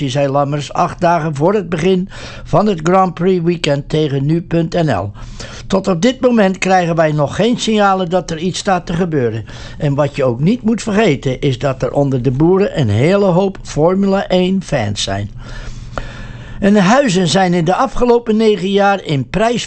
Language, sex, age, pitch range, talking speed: English, male, 60-79, 140-195 Hz, 185 wpm